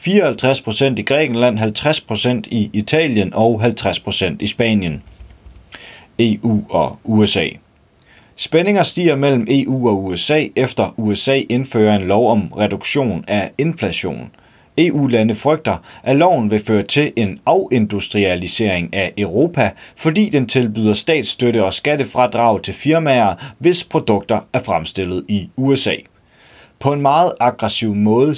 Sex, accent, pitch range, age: male, native, 105-135 Hz, 30-49